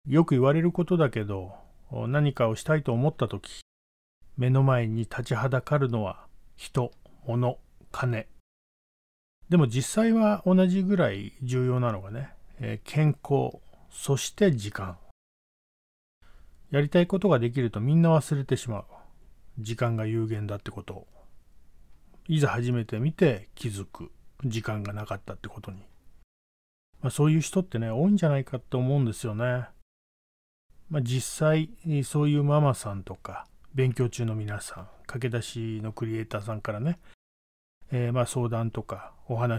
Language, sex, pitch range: Japanese, male, 105-145 Hz